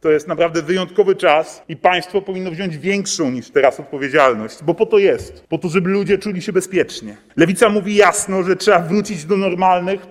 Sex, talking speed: male, 190 wpm